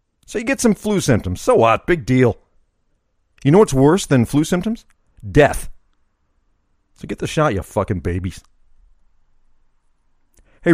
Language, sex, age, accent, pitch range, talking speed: English, male, 50-69, American, 85-130 Hz, 145 wpm